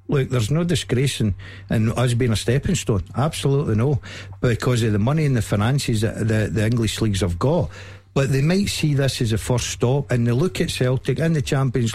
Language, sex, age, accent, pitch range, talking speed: English, male, 60-79, British, 115-160 Hz, 220 wpm